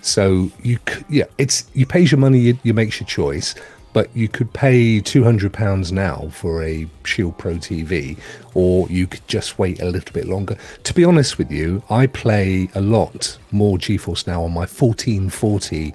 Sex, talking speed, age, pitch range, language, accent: male, 190 wpm, 40-59, 90-130 Hz, English, British